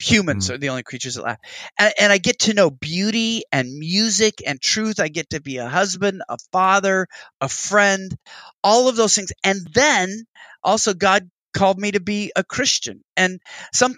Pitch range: 175-220 Hz